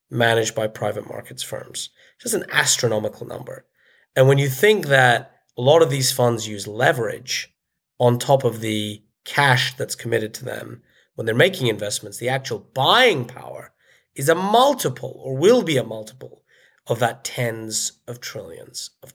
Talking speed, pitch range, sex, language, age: 165 wpm, 115-140 Hz, male, English, 30-49